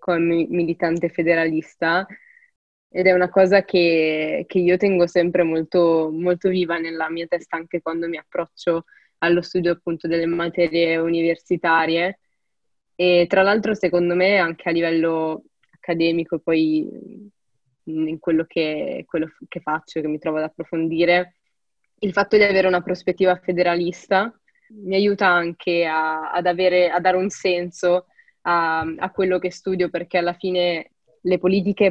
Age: 20-39